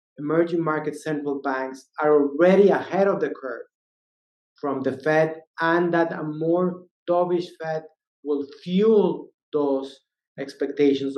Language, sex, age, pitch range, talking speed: English, male, 30-49, 140-170 Hz, 125 wpm